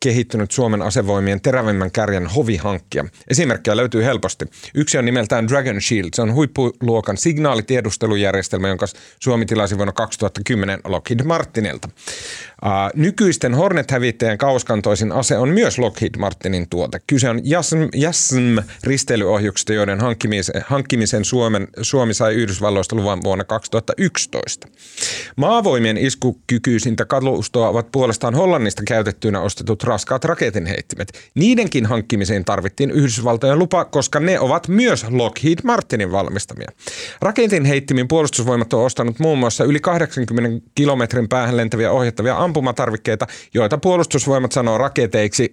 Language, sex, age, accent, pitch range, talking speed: Finnish, male, 30-49, native, 105-140 Hz, 110 wpm